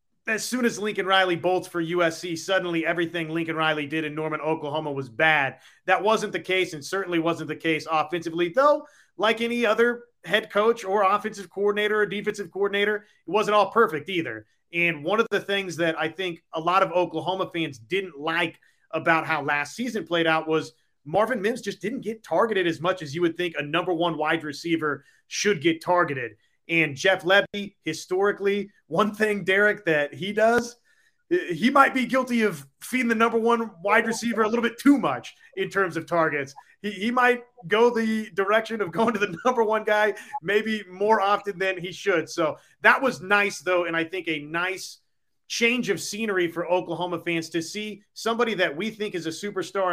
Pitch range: 165-215 Hz